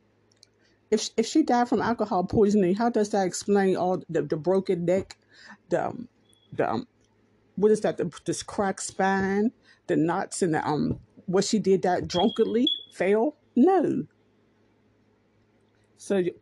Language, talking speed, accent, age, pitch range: English, 140 wpm, American, 50-69, 155-205 Hz